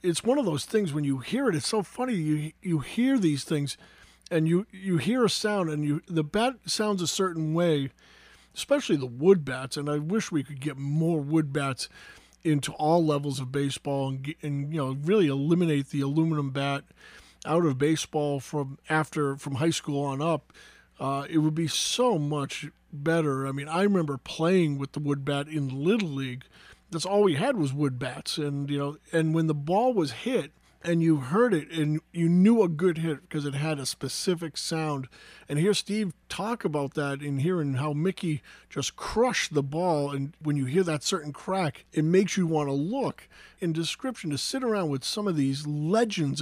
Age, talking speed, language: 40-59, 200 wpm, English